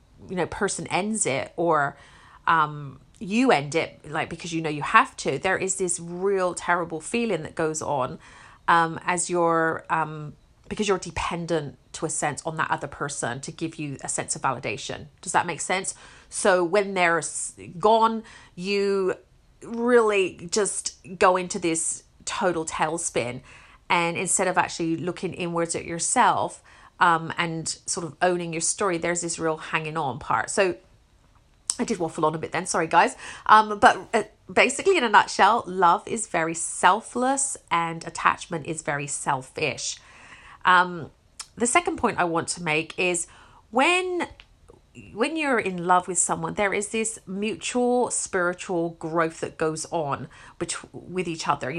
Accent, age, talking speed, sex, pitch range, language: British, 40-59, 160 wpm, female, 165-195 Hz, English